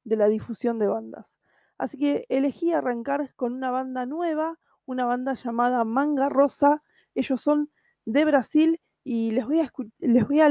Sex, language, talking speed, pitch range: female, Spanish, 155 wpm, 245-305 Hz